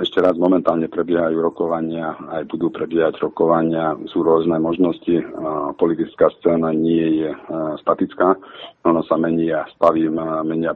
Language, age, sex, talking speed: Slovak, 40-59, male, 130 wpm